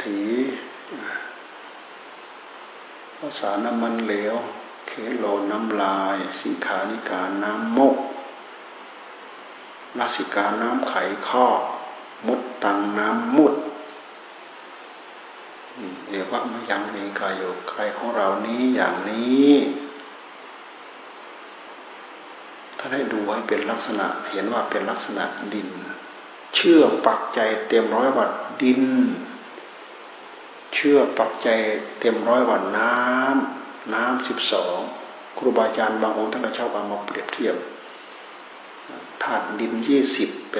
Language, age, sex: Thai, 60-79, male